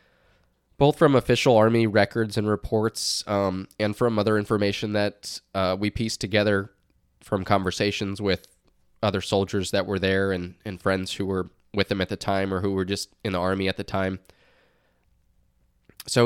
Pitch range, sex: 95-110 Hz, male